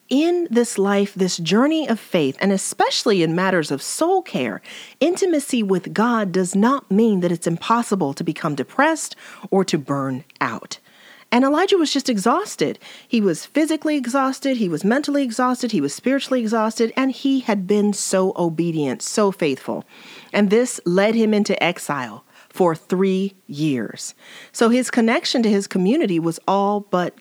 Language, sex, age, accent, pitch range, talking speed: English, female, 40-59, American, 165-235 Hz, 160 wpm